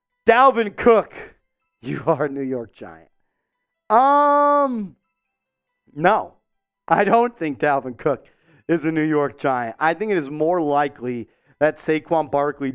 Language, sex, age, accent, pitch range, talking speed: English, male, 40-59, American, 140-230 Hz, 135 wpm